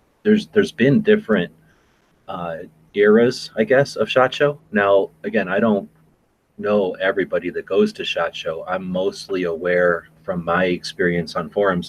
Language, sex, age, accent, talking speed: English, male, 30-49, American, 150 wpm